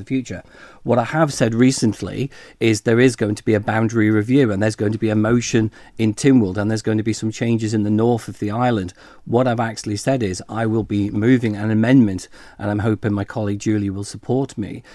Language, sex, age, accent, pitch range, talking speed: English, male, 40-59, British, 100-120 Hz, 235 wpm